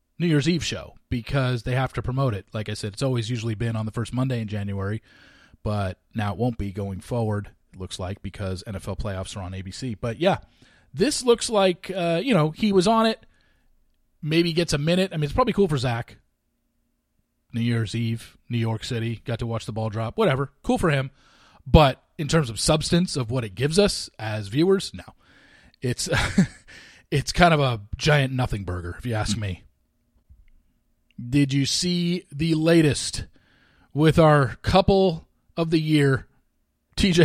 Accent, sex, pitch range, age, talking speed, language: American, male, 110-160 Hz, 30-49, 185 wpm, English